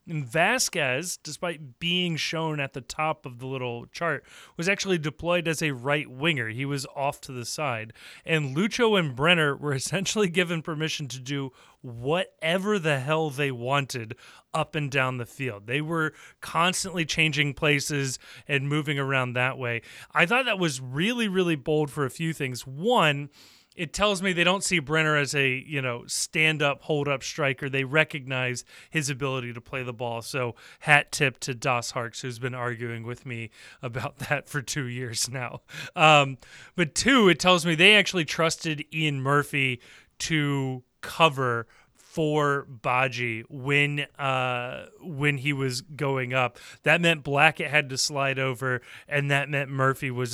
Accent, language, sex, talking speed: American, English, male, 170 wpm